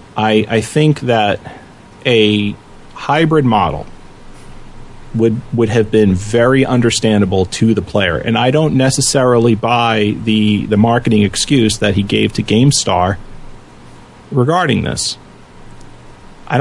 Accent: American